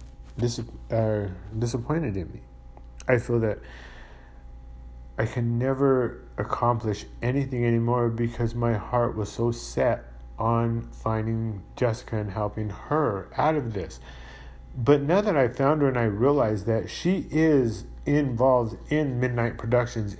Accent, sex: American, male